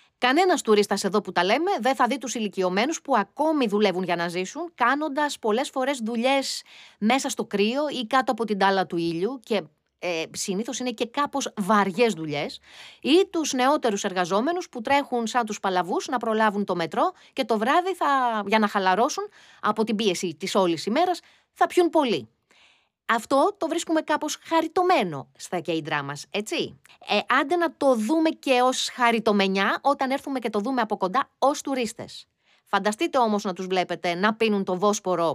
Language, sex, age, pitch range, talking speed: Greek, female, 30-49, 195-275 Hz, 175 wpm